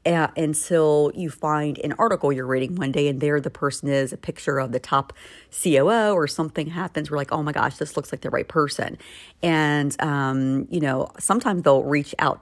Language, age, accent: English, 40-59, American